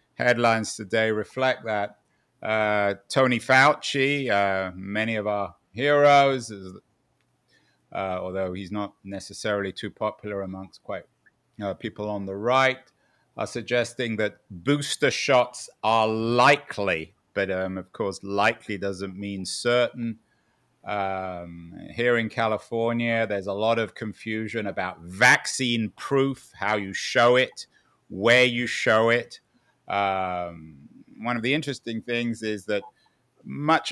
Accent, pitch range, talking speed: British, 100-120 Hz, 120 wpm